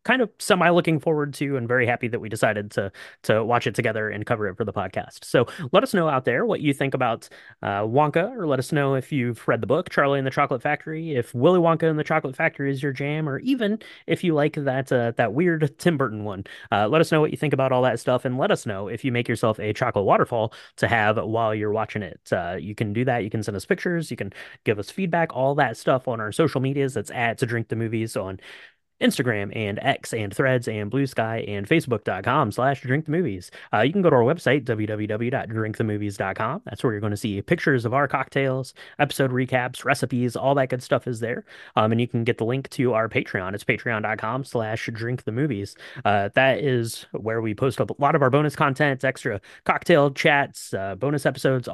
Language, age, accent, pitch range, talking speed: English, 30-49, American, 115-145 Hz, 230 wpm